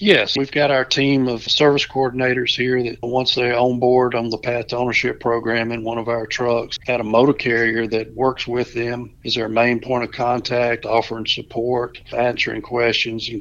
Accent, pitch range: American, 115-125 Hz